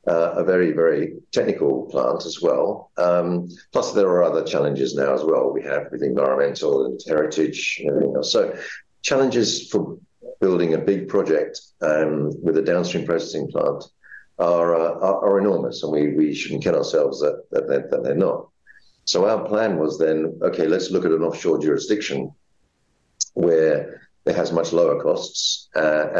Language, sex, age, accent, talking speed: English, male, 50-69, British, 170 wpm